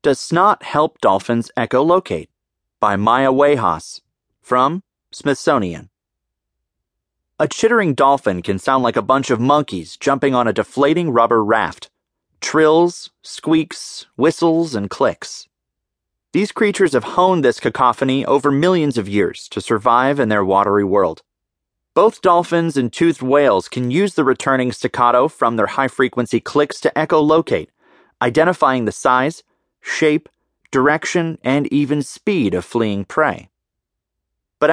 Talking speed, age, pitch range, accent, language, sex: 135 wpm, 30-49, 110-155 Hz, American, English, male